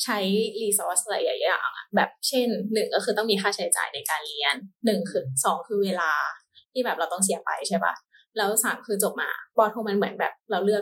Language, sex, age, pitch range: Thai, female, 20-39, 190-235 Hz